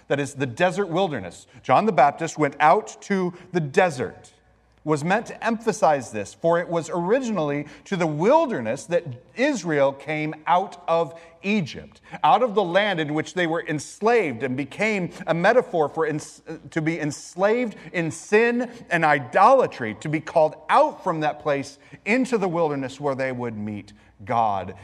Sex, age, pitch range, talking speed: male, 30-49, 120-170 Hz, 165 wpm